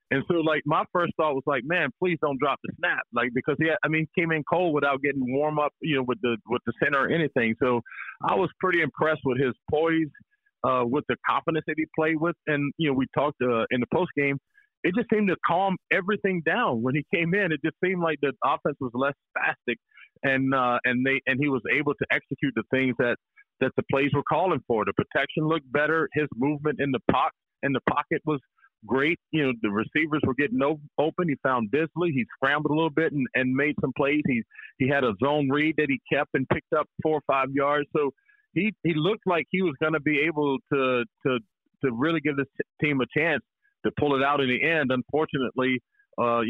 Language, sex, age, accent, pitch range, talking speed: English, male, 40-59, American, 130-160 Hz, 230 wpm